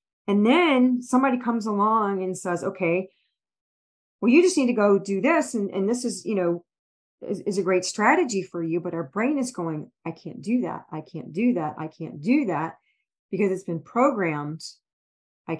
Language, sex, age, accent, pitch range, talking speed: English, female, 40-59, American, 155-205 Hz, 195 wpm